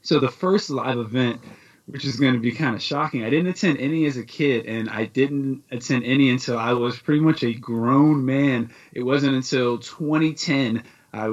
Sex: male